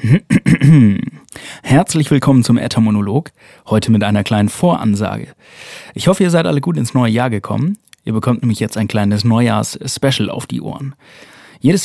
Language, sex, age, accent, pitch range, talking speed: German, male, 30-49, German, 110-140 Hz, 150 wpm